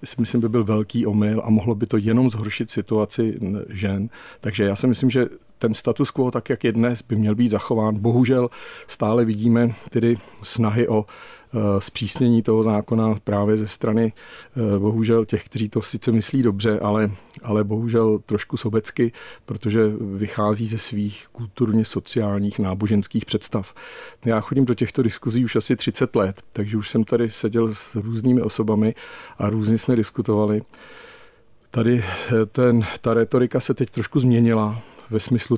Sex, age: male, 40-59